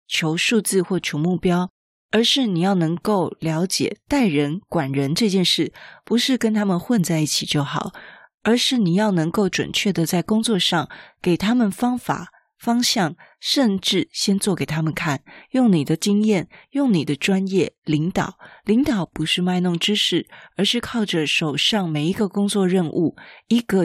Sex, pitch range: female, 160-215 Hz